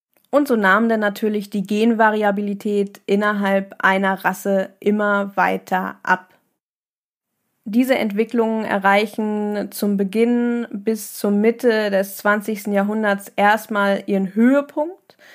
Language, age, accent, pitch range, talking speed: German, 20-39, German, 200-230 Hz, 105 wpm